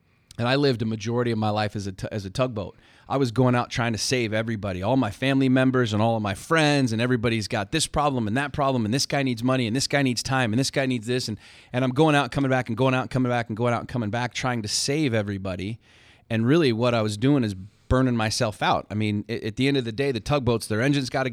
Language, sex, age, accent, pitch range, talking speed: English, male, 30-49, American, 115-135 Hz, 285 wpm